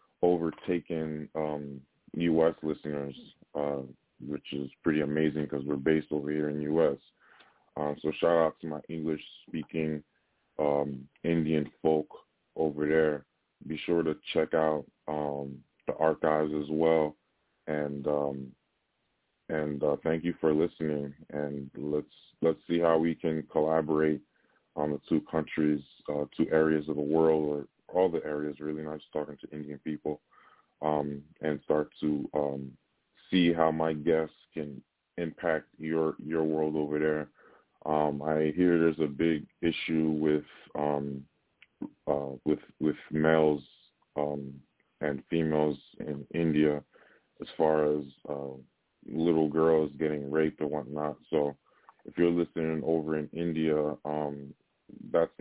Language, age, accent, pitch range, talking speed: English, 20-39, American, 75-80 Hz, 140 wpm